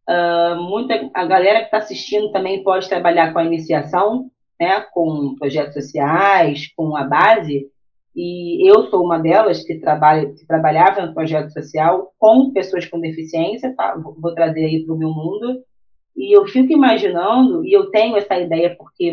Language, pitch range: Portuguese, 160-215 Hz